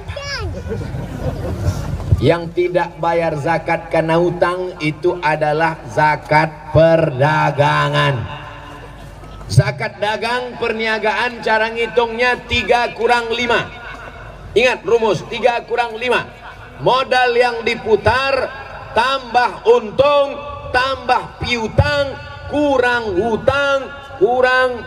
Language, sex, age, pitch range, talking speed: Indonesian, male, 40-59, 170-255 Hz, 80 wpm